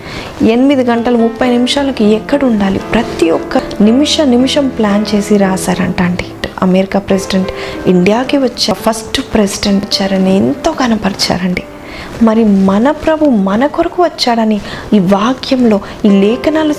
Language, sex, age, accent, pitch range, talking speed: Telugu, female, 20-39, native, 190-250 Hz, 120 wpm